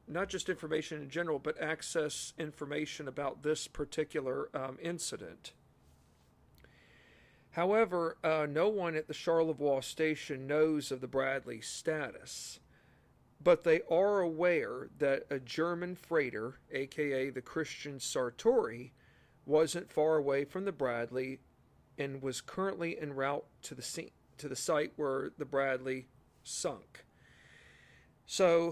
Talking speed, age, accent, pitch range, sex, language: 125 wpm, 40-59, American, 135-165 Hz, male, English